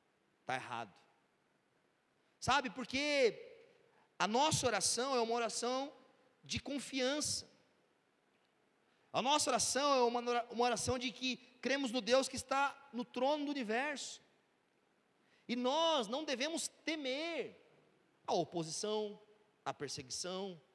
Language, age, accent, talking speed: Portuguese, 40-59, Brazilian, 115 wpm